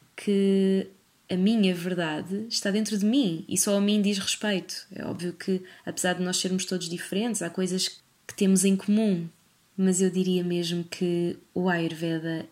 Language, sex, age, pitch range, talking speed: Portuguese, female, 20-39, 180-205 Hz, 175 wpm